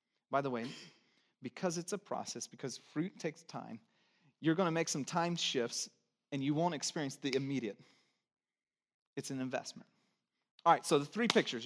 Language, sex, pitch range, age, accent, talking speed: English, male, 200-270 Hz, 30-49, American, 170 wpm